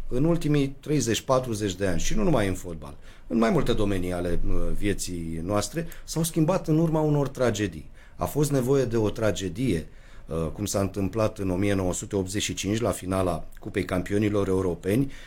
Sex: male